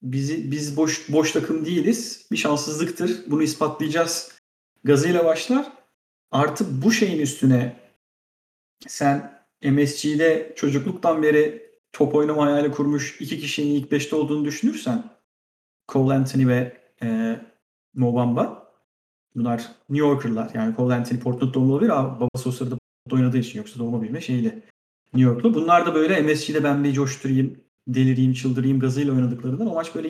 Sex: male